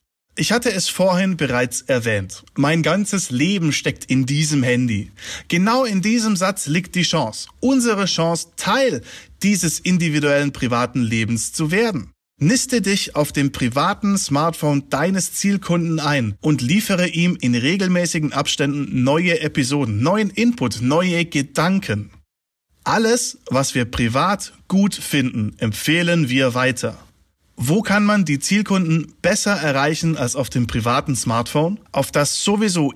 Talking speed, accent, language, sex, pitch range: 135 wpm, German, German, male, 125-185 Hz